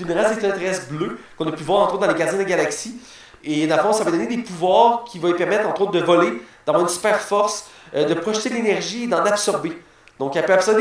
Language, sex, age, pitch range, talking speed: French, male, 30-49, 155-200 Hz, 245 wpm